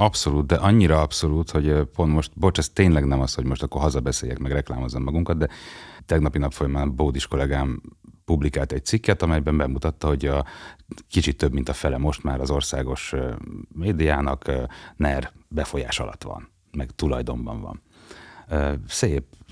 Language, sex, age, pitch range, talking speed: Hungarian, male, 30-49, 70-90 Hz, 155 wpm